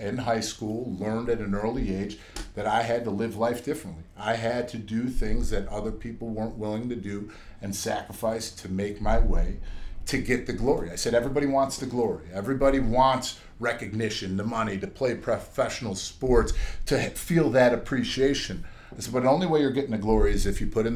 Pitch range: 100-125 Hz